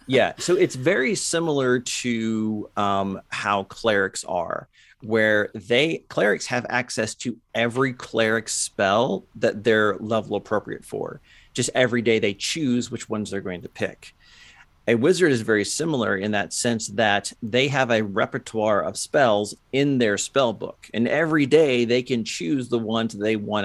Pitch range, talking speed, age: 100-125 Hz, 160 wpm, 40-59